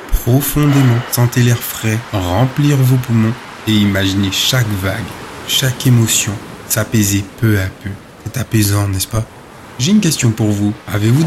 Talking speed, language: 145 wpm, French